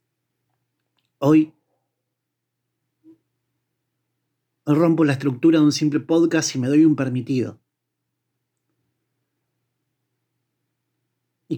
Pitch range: 110-160 Hz